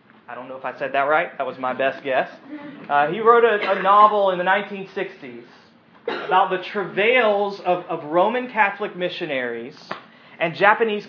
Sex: male